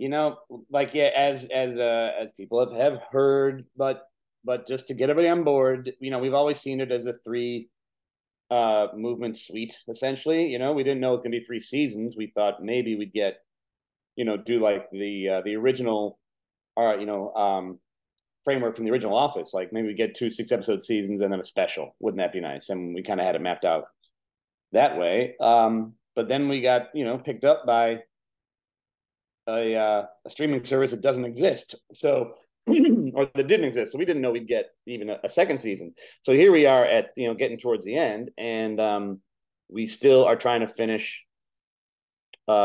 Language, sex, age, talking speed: English, male, 30-49, 205 wpm